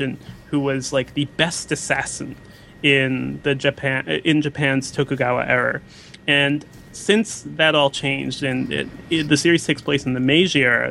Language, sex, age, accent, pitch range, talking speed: English, male, 30-49, American, 135-155 Hz, 160 wpm